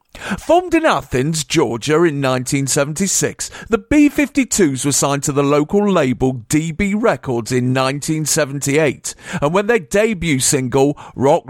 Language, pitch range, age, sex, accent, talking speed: English, 130-160 Hz, 50-69, male, British, 125 wpm